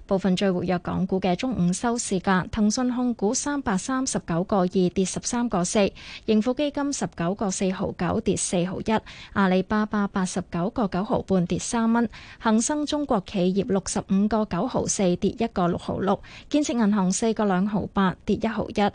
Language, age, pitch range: Chinese, 20-39, 185-230 Hz